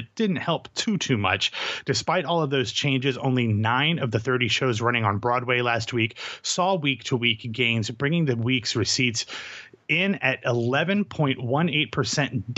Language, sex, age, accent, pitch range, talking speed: English, male, 30-49, American, 115-145 Hz, 155 wpm